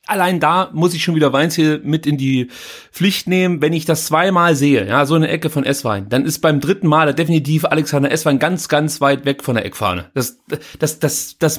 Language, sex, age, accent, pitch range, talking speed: German, male, 30-49, German, 145-195 Hz, 225 wpm